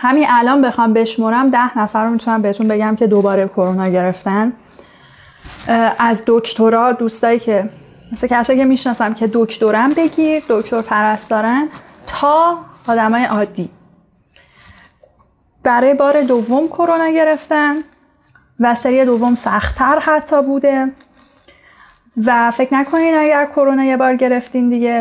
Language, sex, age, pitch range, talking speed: Persian, female, 10-29, 225-275 Hz, 120 wpm